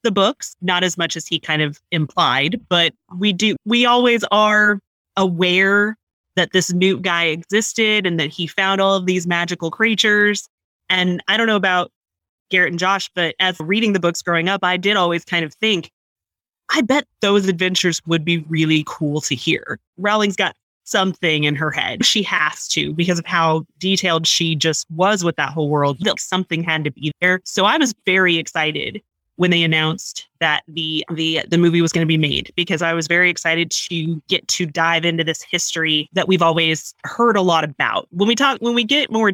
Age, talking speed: 30-49, 200 wpm